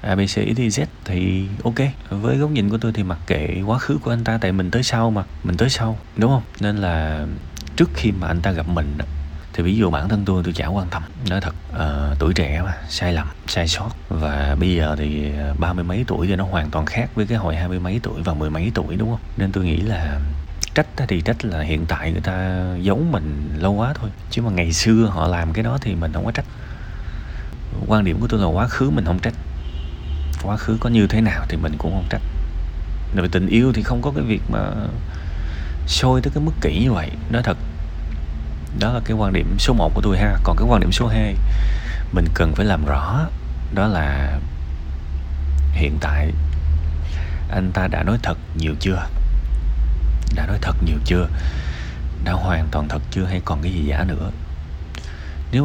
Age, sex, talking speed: 20-39, male, 215 wpm